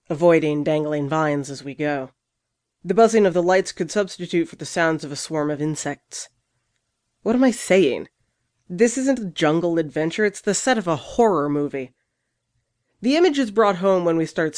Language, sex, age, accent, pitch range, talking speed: English, female, 30-49, American, 145-185 Hz, 185 wpm